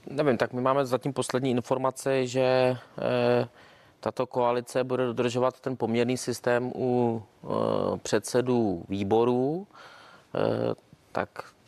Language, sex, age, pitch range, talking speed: Czech, male, 30-49, 115-125 Hz, 100 wpm